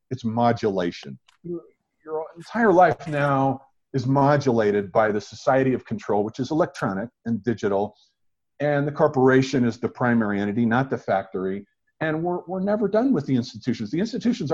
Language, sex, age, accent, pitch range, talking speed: English, male, 50-69, American, 110-150 Hz, 155 wpm